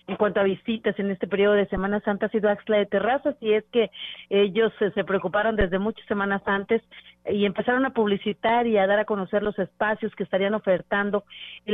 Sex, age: female, 40-59